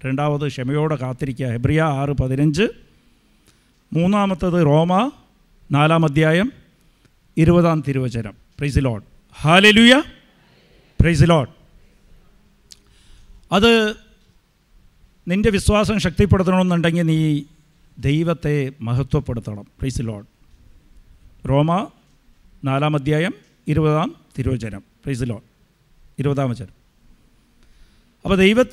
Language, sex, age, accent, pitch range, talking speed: English, male, 50-69, Indian, 130-180 Hz, 90 wpm